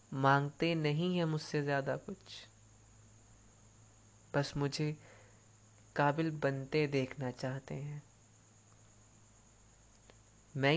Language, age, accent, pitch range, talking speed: Hindi, 20-39, native, 110-155 Hz, 80 wpm